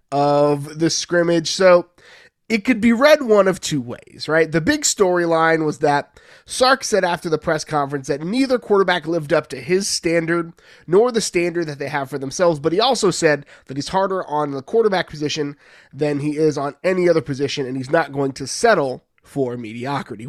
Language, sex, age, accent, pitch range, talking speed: English, male, 20-39, American, 150-190 Hz, 195 wpm